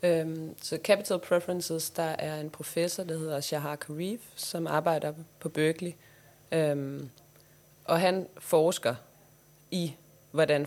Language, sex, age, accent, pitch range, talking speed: Danish, female, 30-49, native, 145-170 Hz, 130 wpm